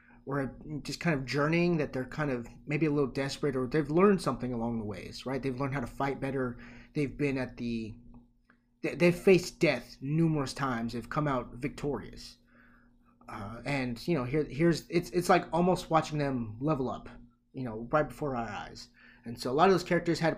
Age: 30-49